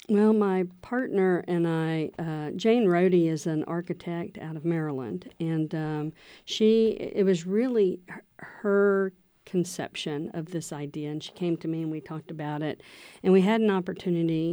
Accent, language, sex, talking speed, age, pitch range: American, English, female, 165 wpm, 50-69, 155-185 Hz